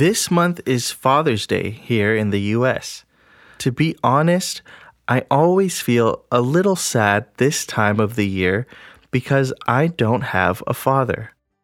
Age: 20-39